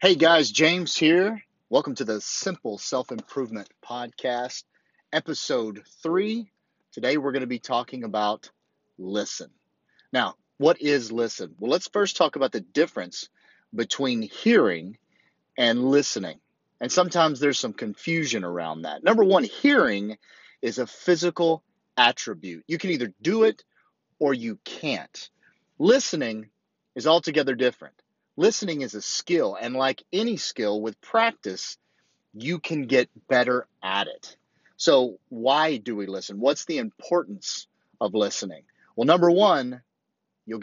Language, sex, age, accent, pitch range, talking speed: English, male, 40-59, American, 120-180 Hz, 135 wpm